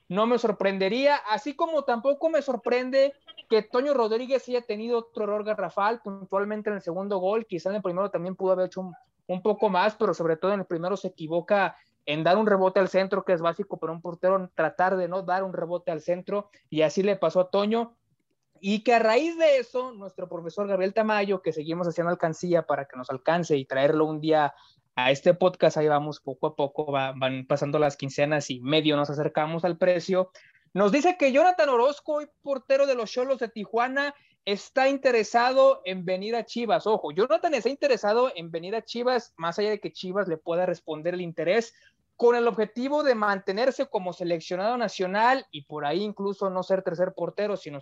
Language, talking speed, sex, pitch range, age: Spanish, 200 wpm, male, 170-230 Hz, 20-39